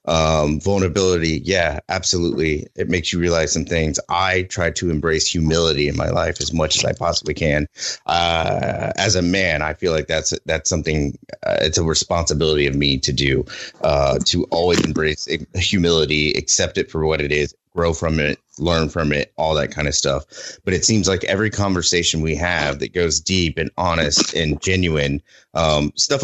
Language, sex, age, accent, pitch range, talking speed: English, male, 30-49, American, 75-95 Hz, 185 wpm